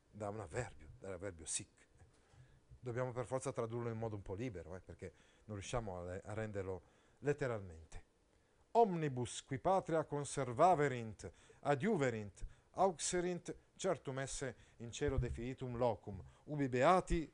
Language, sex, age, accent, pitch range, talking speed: Italian, male, 40-59, native, 100-145 Hz, 125 wpm